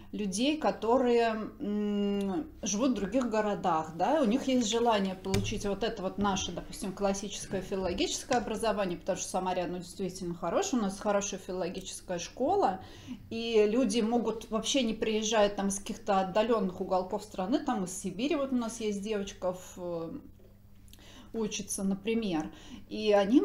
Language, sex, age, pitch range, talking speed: Russian, female, 30-49, 180-225 Hz, 145 wpm